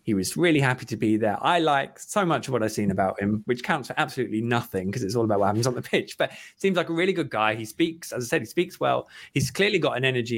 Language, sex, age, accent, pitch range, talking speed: English, male, 20-39, British, 105-145 Hz, 295 wpm